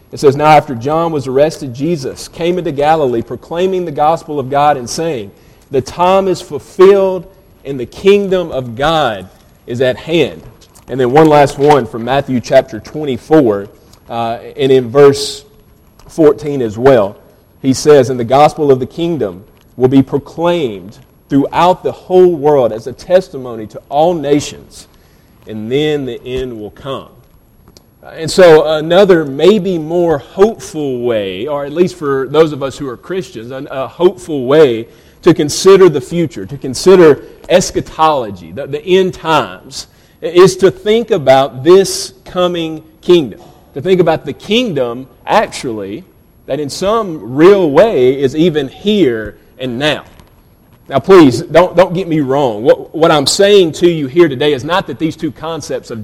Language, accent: English, American